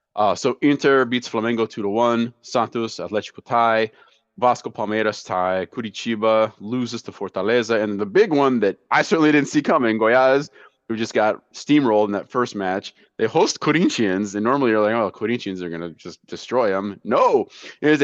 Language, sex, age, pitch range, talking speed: English, male, 20-39, 100-140 Hz, 175 wpm